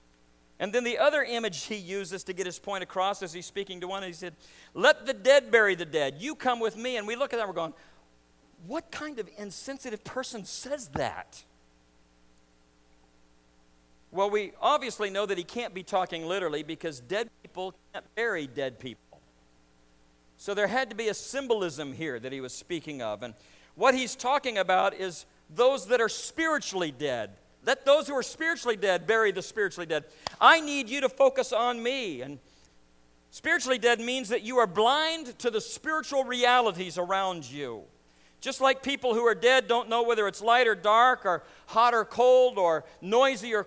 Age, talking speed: 50-69, 185 wpm